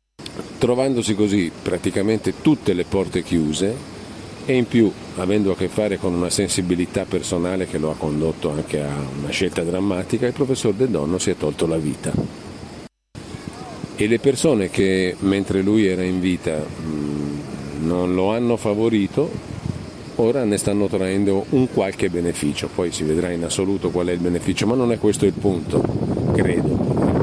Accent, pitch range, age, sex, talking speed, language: native, 85-105 Hz, 50-69, male, 160 wpm, Italian